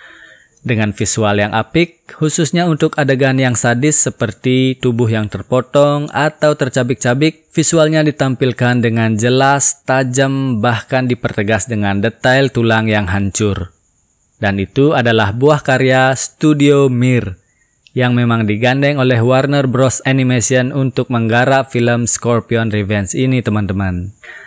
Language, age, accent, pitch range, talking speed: Indonesian, 20-39, native, 115-140 Hz, 120 wpm